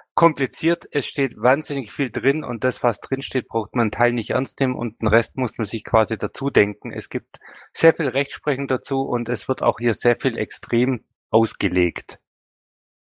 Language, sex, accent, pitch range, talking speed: German, male, German, 115-135 Hz, 195 wpm